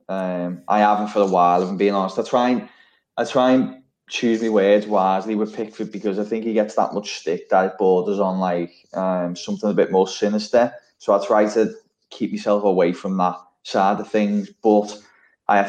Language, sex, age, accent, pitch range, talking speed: English, male, 20-39, British, 95-110 Hz, 210 wpm